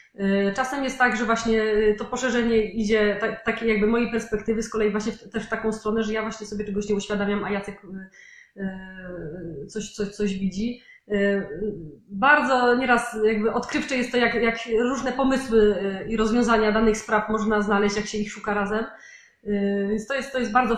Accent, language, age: native, Polish, 20-39